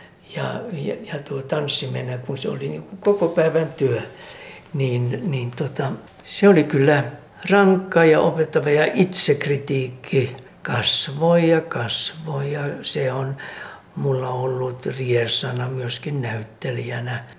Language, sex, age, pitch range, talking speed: Finnish, male, 60-79, 125-150 Hz, 115 wpm